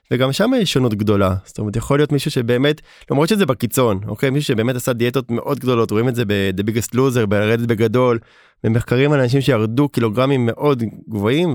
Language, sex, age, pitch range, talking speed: Hebrew, male, 20-39, 115-145 Hz, 185 wpm